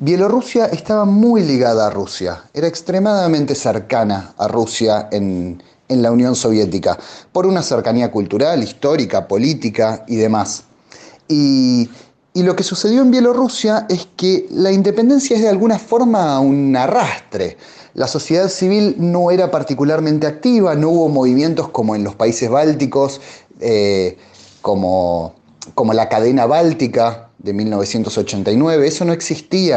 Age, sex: 30-49, male